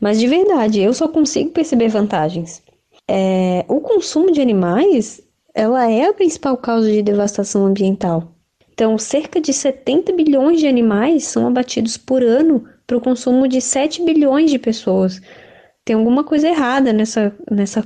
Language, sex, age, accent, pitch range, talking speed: Portuguese, female, 10-29, Brazilian, 200-280 Hz, 150 wpm